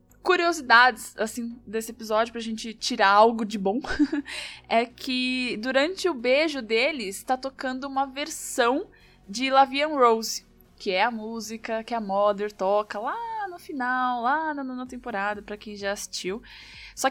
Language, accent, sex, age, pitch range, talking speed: Portuguese, Brazilian, female, 10-29, 220-295 Hz, 145 wpm